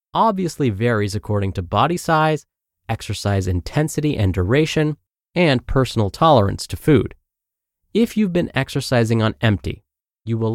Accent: American